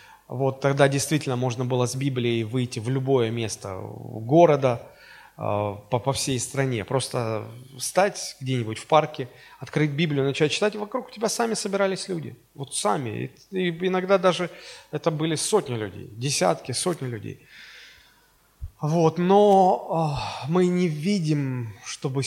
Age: 20-39